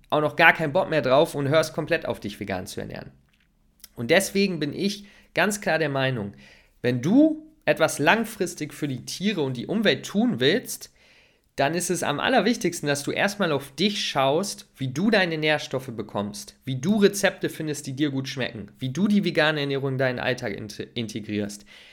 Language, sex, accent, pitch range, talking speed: German, male, German, 130-170 Hz, 185 wpm